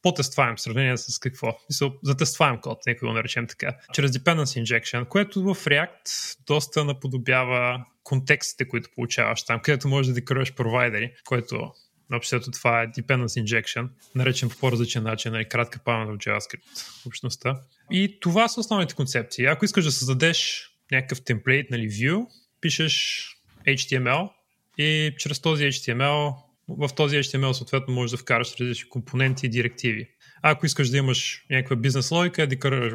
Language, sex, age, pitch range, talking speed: Bulgarian, male, 20-39, 125-150 Hz, 150 wpm